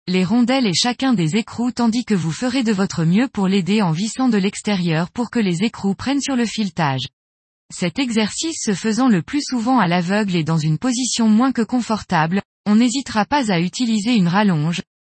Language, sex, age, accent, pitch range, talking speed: French, female, 20-39, French, 180-245 Hz, 200 wpm